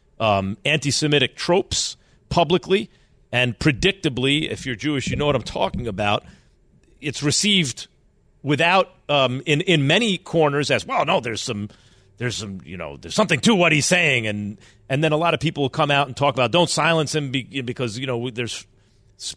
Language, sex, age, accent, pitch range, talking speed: English, male, 40-59, American, 105-145 Hz, 175 wpm